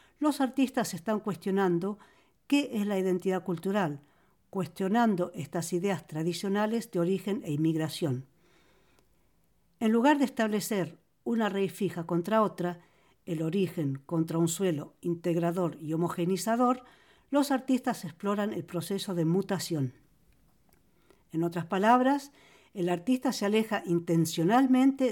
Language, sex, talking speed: Polish, female, 115 wpm